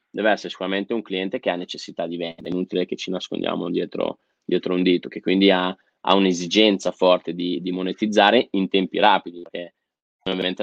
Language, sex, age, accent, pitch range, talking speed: Italian, male, 20-39, native, 90-100 Hz, 185 wpm